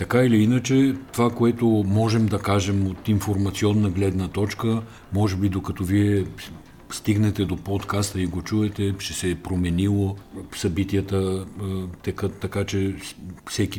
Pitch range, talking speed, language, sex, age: 90-105 Hz, 135 wpm, Bulgarian, male, 50-69